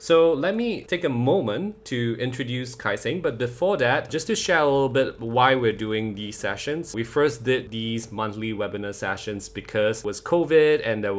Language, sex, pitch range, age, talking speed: English, male, 100-125 Hz, 20-39, 200 wpm